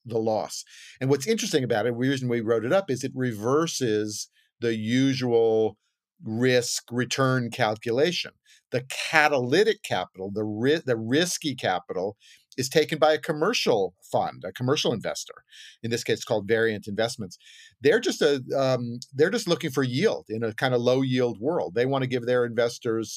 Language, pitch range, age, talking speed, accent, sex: English, 115-140 Hz, 50-69, 165 wpm, American, male